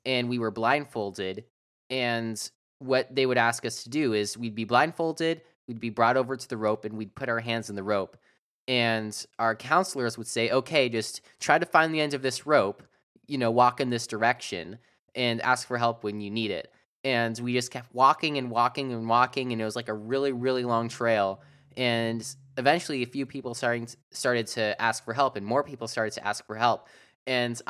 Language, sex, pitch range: English, male, 110-130 Hz